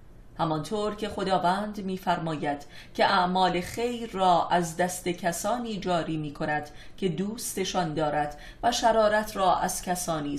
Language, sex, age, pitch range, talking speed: Persian, female, 30-49, 165-200 Hz, 125 wpm